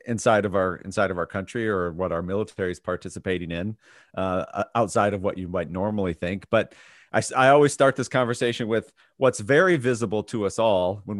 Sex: male